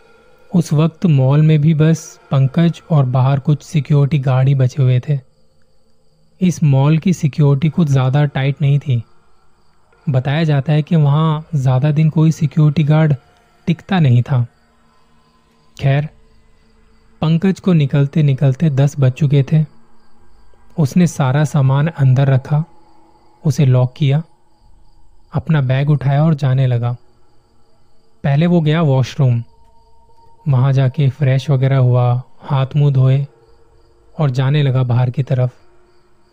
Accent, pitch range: native, 125-155 Hz